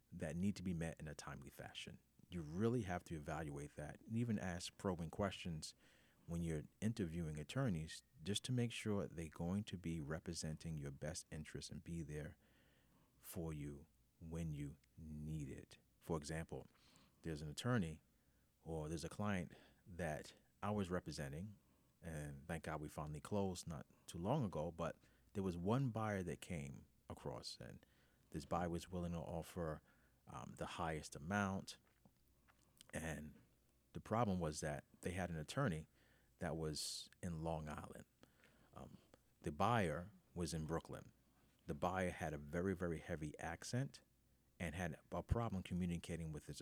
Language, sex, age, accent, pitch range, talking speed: English, male, 40-59, American, 80-95 Hz, 155 wpm